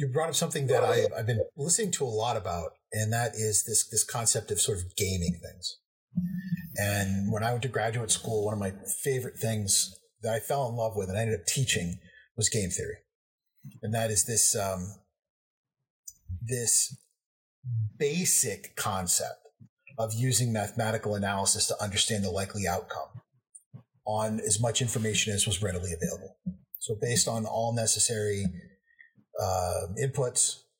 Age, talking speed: 30-49, 160 wpm